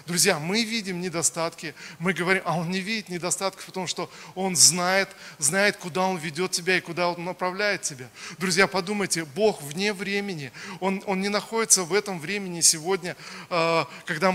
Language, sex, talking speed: Russian, male, 165 wpm